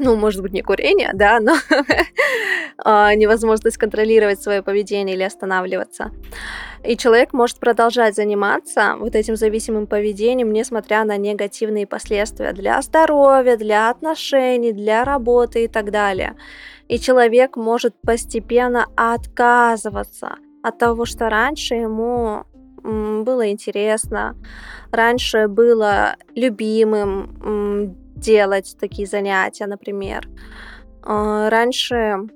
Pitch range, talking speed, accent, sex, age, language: 215-245 Hz, 100 wpm, native, female, 20-39, Russian